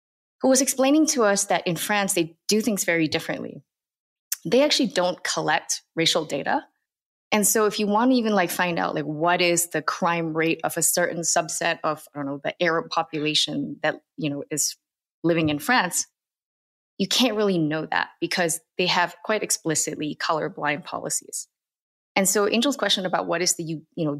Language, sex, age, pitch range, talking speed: English, female, 20-39, 155-200 Hz, 185 wpm